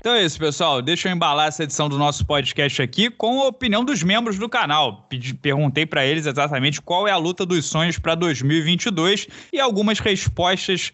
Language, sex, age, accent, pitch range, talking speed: Portuguese, male, 20-39, Brazilian, 140-185 Hz, 190 wpm